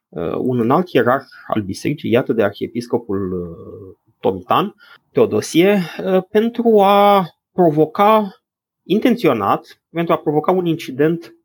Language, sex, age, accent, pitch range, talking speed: Romanian, male, 30-49, native, 115-155 Hz, 100 wpm